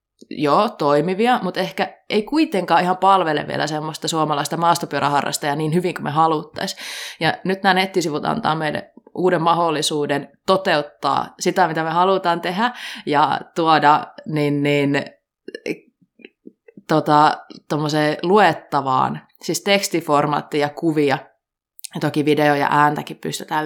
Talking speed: 115 wpm